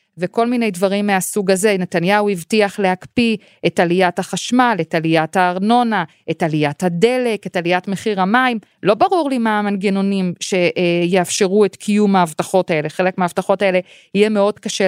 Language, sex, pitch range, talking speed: Hebrew, female, 170-210 Hz, 150 wpm